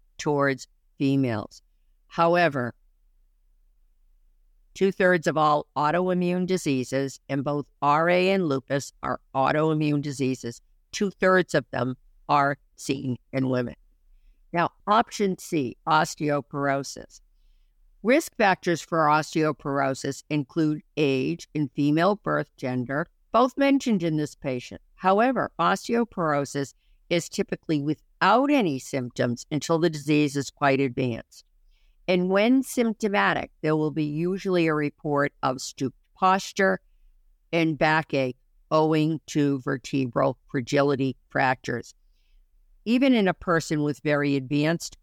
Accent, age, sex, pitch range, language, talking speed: American, 50-69, female, 130-170 Hz, English, 110 wpm